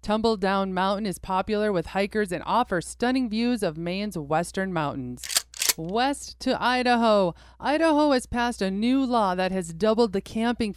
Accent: American